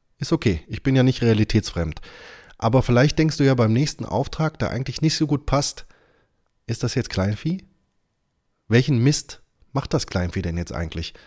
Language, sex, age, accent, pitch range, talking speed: German, male, 20-39, German, 105-140 Hz, 175 wpm